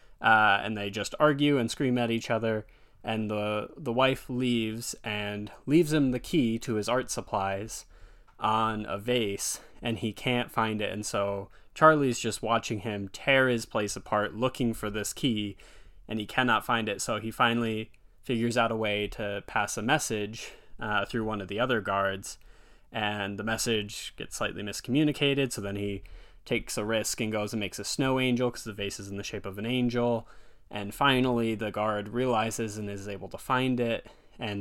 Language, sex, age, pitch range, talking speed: English, male, 20-39, 105-120 Hz, 190 wpm